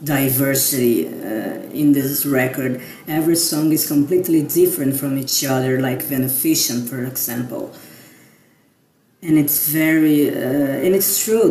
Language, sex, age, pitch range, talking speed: Portuguese, female, 30-49, 140-165 Hz, 125 wpm